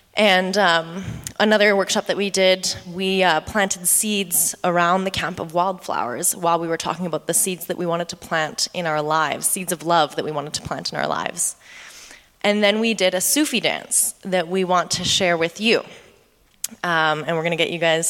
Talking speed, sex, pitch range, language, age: 210 wpm, female, 175-210 Hz, English, 20-39